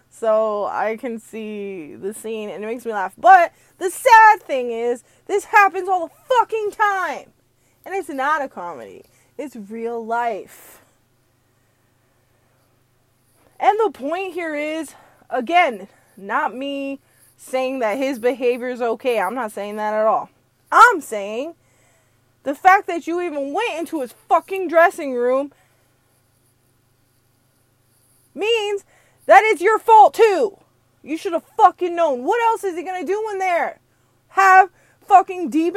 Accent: American